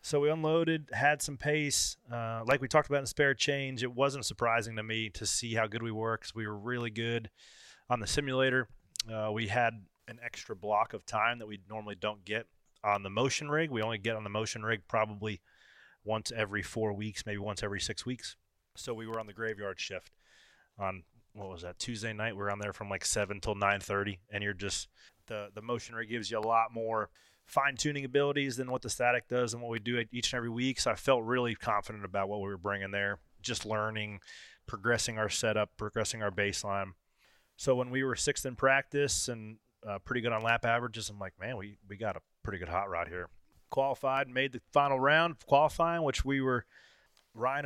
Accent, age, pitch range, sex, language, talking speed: American, 30-49, 105-125 Hz, male, English, 220 wpm